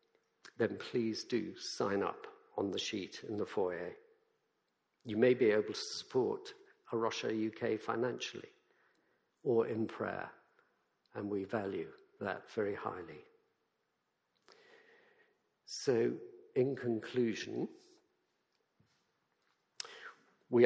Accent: British